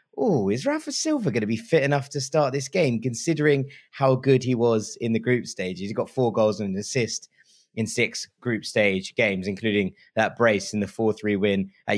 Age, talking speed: 20-39, 210 wpm